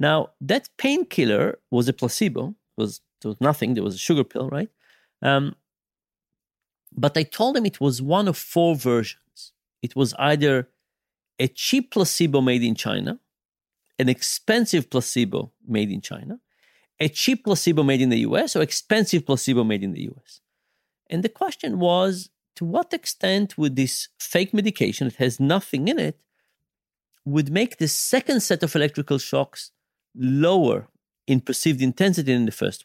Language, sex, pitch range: English, male, 130-190 Hz